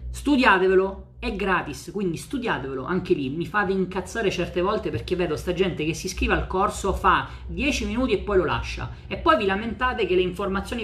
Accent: native